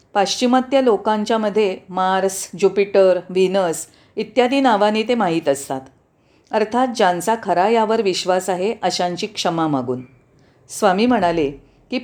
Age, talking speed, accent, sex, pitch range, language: 40-59, 110 wpm, native, female, 185-240 Hz, Marathi